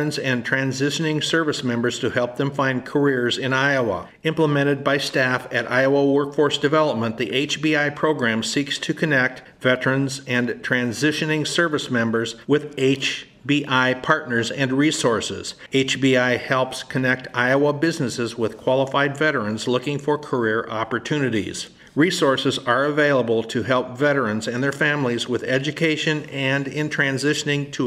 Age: 50-69